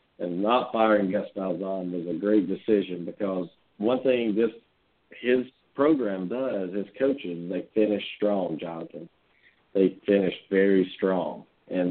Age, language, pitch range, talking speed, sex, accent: 50-69, English, 95-110 Hz, 130 wpm, male, American